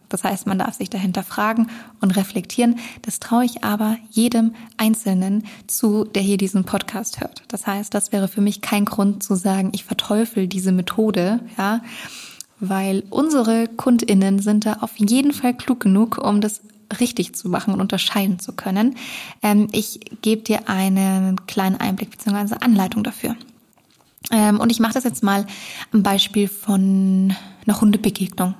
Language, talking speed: German, 155 wpm